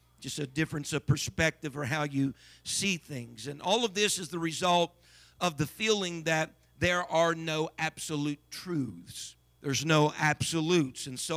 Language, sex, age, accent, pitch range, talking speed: English, male, 50-69, American, 145-180 Hz, 165 wpm